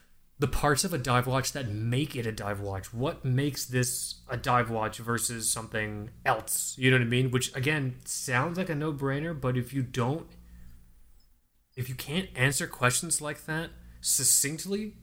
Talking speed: 180 wpm